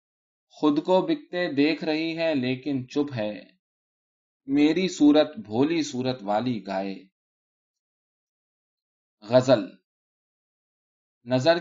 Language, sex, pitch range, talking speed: Urdu, male, 115-155 Hz, 90 wpm